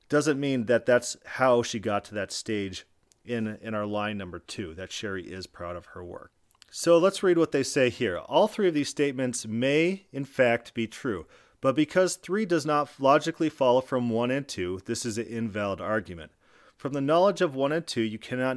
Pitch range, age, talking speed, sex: 105-140 Hz, 40-59, 210 wpm, male